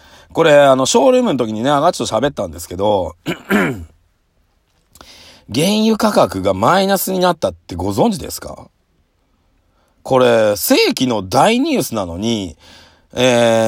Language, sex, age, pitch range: Japanese, male, 40-59, 90-150 Hz